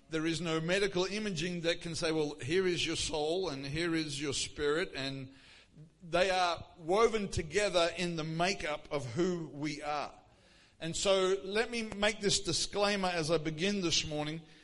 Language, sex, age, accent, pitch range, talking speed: English, male, 50-69, Australian, 160-200 Hz, 170 wpm